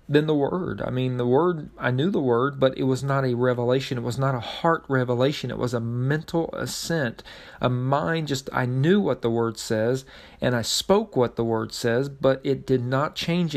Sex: male